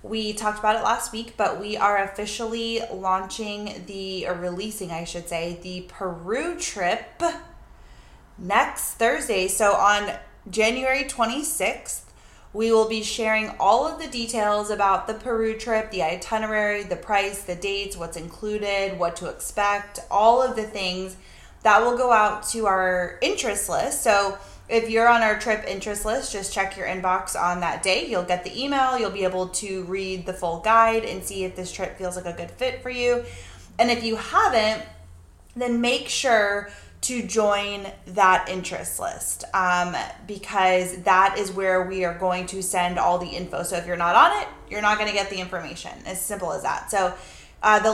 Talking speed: 180 wpm